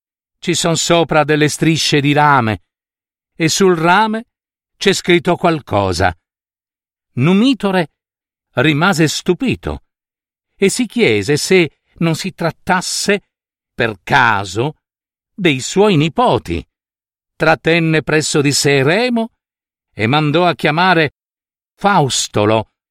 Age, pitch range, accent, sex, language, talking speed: 50-69, 130-180 Hz, native, male, Italian, 100 wpm